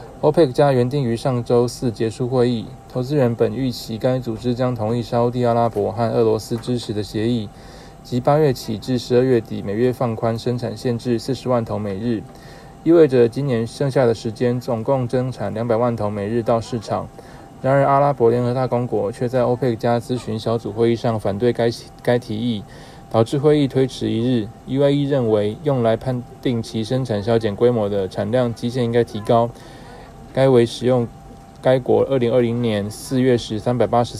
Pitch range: 115-130 Hz